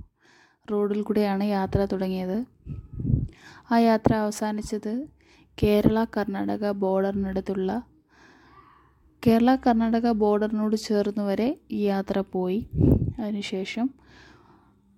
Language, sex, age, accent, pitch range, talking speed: Malayalam, female, 20-39, native, 195-235 Hz, 75 wpm